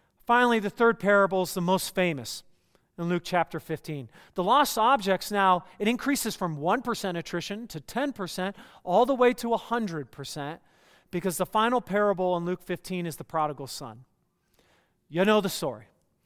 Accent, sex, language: American, male, English